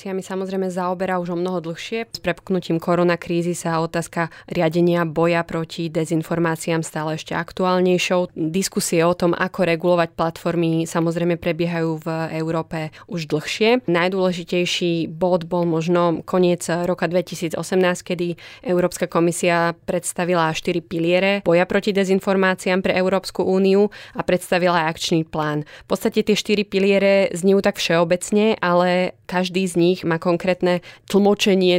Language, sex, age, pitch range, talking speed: Slovak, female, 20-39, 165-185 Hz, 130 wpm